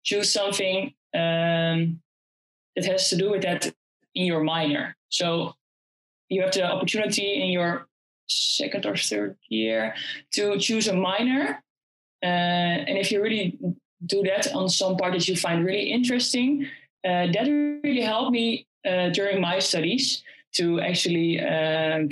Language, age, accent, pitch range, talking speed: English, 20-39, Dutch, 170-195 Hz, 145 wpm